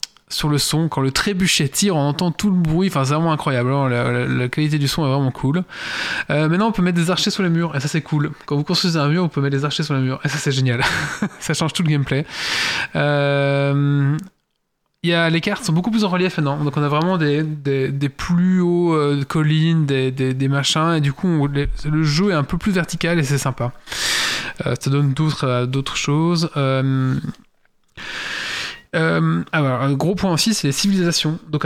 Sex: male